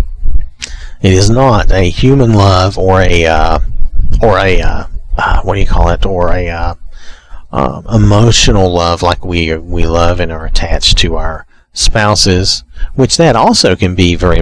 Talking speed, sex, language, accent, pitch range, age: 165 wpm, male, English, American, 85-110 Hz, 40-59